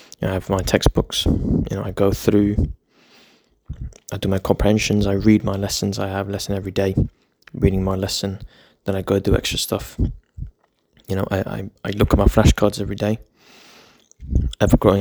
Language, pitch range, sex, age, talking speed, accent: English, 95-110 Hz, male, 20-39, 175 wpm, British